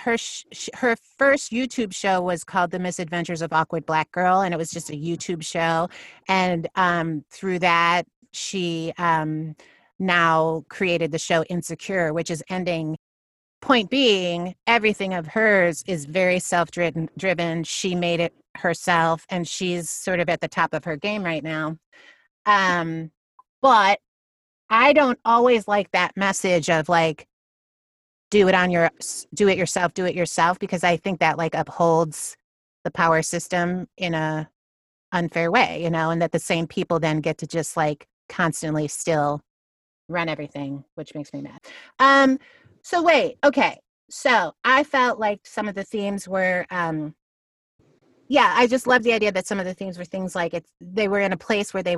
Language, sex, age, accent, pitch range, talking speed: English, female, 30-49, American, 165-195 Hz, 170 wpm